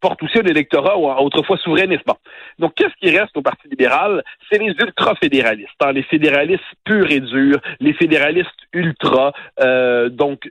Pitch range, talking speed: 140-225 Hz, 160 wpm